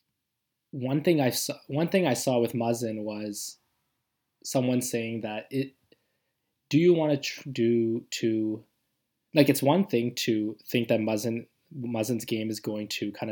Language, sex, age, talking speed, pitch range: English, male, 20-39, 160 wpm, 110-125 Hz